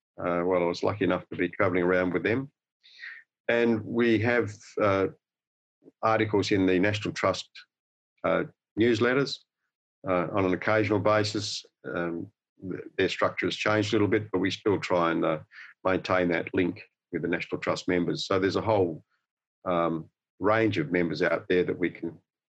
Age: 50-69